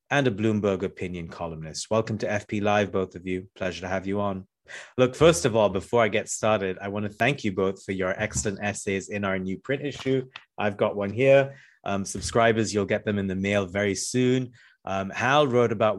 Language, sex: English, male